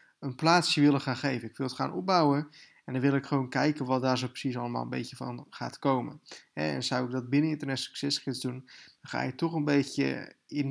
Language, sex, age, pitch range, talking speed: Dutch, male, 20-39, 125-145 Hz, 235 wpm